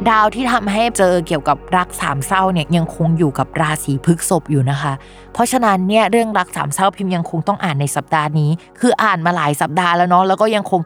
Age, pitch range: 20-39, 170-215 Hz